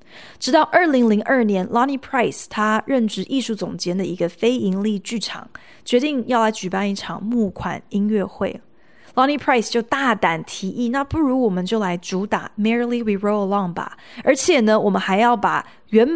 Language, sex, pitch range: Chinese, female, 195-250 Hz